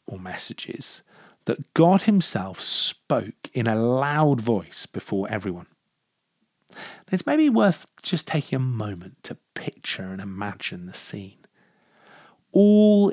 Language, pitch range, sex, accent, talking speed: English, 110-155 Hz, male, British, 115 wpm